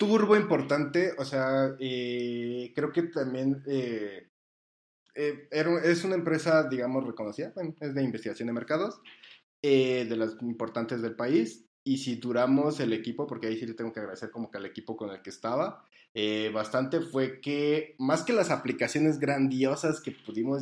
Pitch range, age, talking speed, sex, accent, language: 110-135 Hz, 20-39, 165 wpm, male, Mexican, Spanish